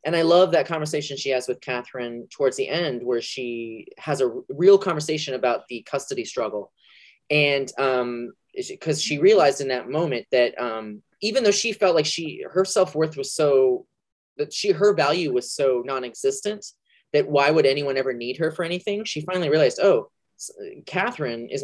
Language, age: English, 20-39